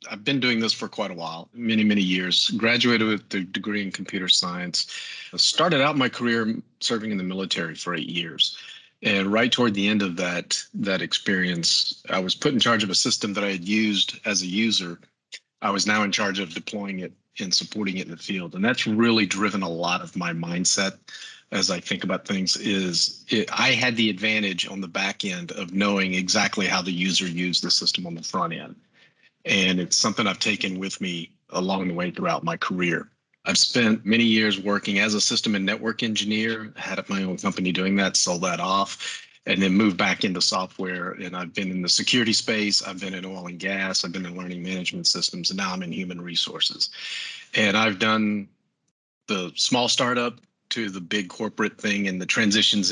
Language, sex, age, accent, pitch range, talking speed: English, male, 40-59, American, 95-110 Hz, 205 wpm